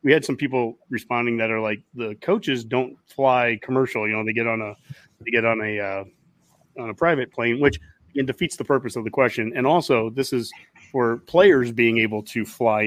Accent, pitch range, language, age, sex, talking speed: American, 110-130 Hz, English, 30-49, male, 210 wpm